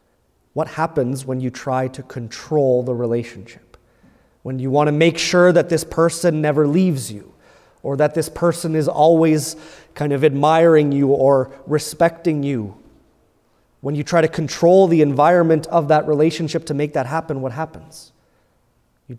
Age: 30-49